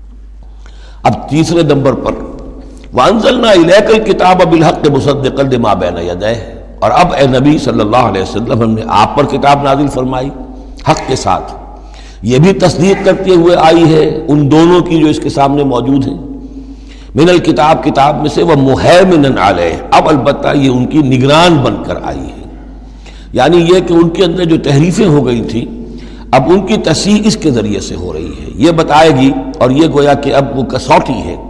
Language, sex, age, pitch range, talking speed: Urdu, male, 60-79, 130-175 Hz, 185 wpm